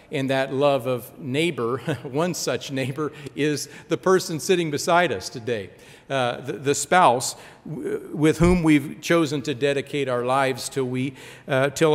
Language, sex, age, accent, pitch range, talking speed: English, male, 50-69, American, 140-175 Hz, 160 wpm